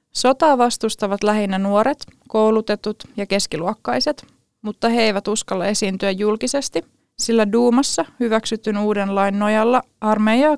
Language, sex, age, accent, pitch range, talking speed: Finnish, female, 20-39, native, 200-245 Hz, 115 wpm